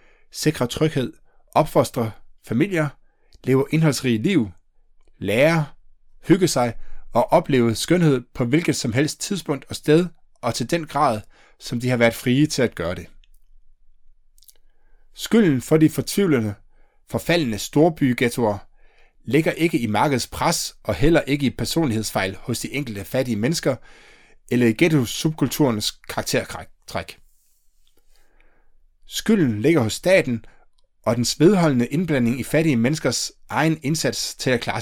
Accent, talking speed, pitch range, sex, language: native, 130 wpm, 110-155 Hz, male, Danish